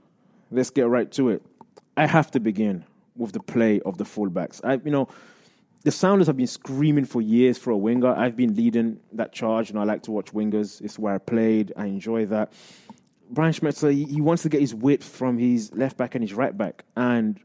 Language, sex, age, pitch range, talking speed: English, male, 20-39, 105-130 Hz, 215 wpm